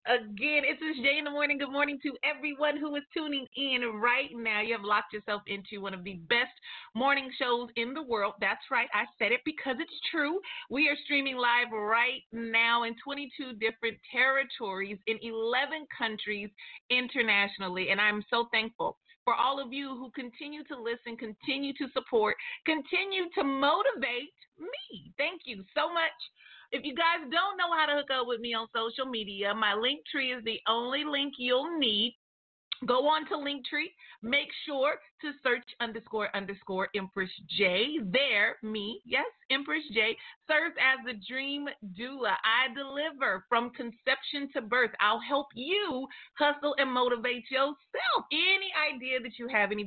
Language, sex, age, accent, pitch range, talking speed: English, female, 30-49, American, 230-290 Hz, 170 wpm